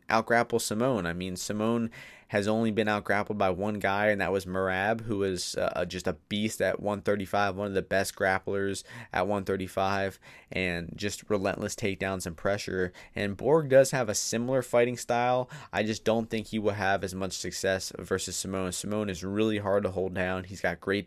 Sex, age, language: male, 20-39, English